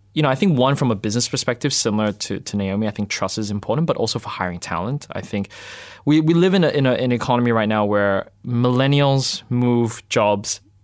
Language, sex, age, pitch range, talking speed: English, male, 20-39, 95-120 Hz, 215 wpm